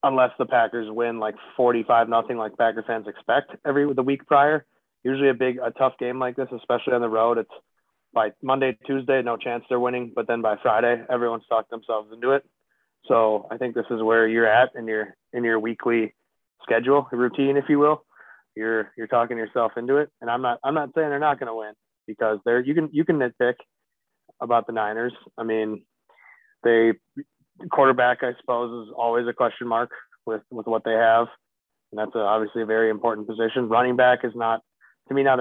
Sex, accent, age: male, American, 20-39